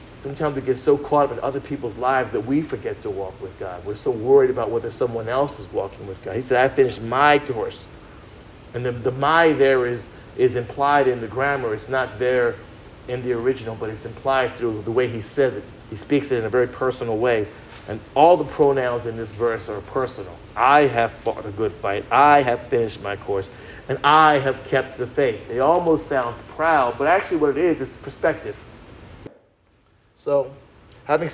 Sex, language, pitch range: male, English, 120-155 Hz